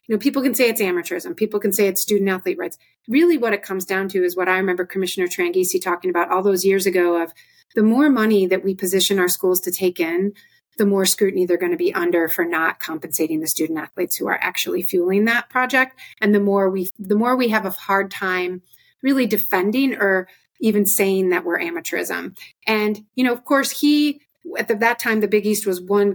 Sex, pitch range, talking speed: female, 190-245 Hz, 215 wpm